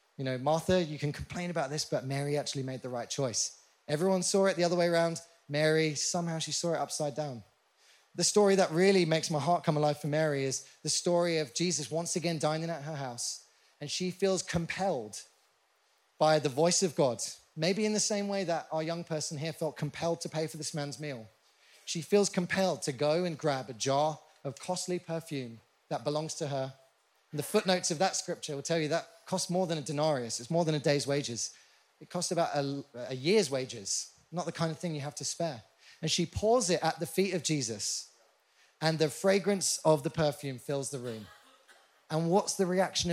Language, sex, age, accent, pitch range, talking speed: English, male, 20-39, British, 145-180 Hz, 215 wpm